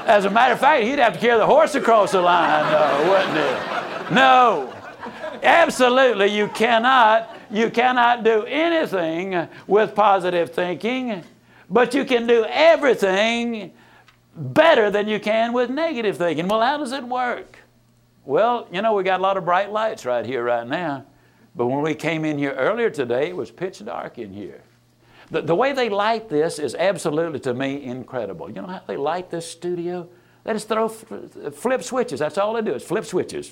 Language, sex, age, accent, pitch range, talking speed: English, male, 60-79, American, 140-225 Hz, 185 wpm